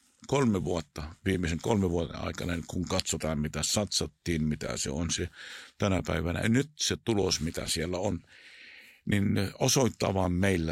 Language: Finnish